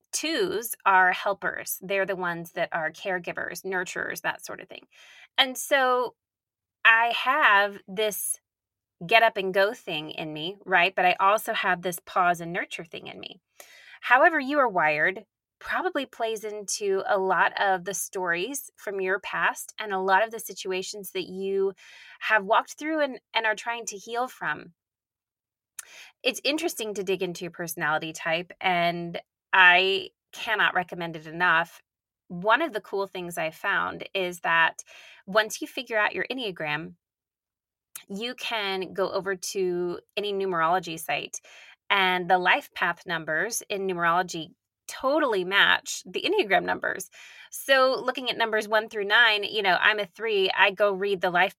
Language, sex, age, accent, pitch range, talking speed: English, female, 20-39, American, 180-225 Hz, 160 wpm